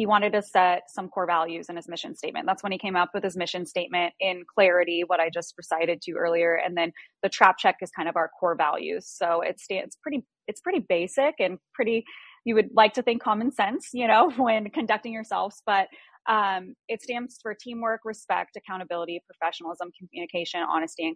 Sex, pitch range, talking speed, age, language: female, 170-200 Hz, 205 wpm, 20-39, English